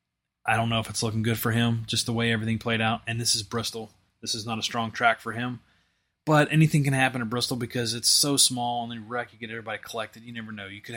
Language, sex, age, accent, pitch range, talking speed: English, male, 20-39, American, 110-125 Hz, 270 wpm